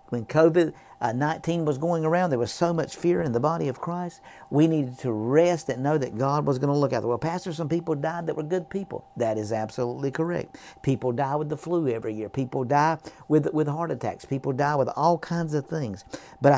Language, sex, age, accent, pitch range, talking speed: English, male, 50-69, American, 125-165 Hz, 230 wpm